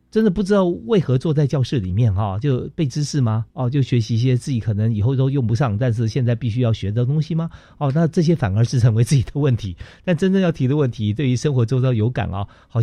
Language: Chinese